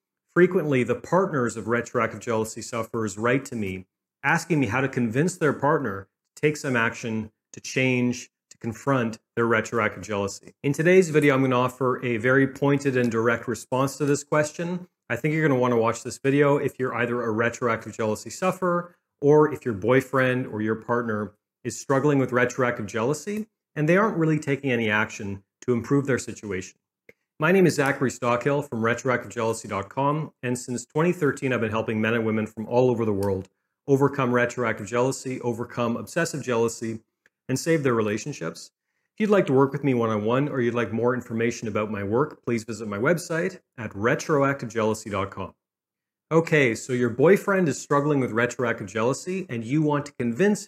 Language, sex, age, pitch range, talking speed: English, male, 40-59, 115-140 Hz, 180 wpm